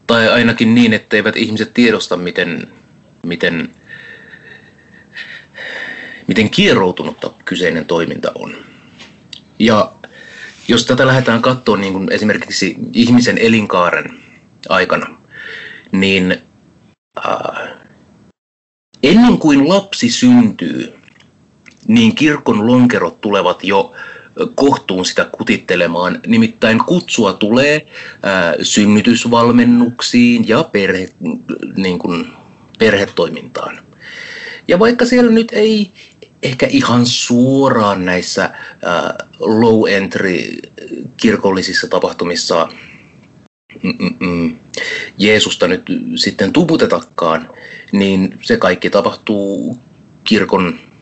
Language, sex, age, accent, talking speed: Finnish, male, 30-49, native, 75 wpm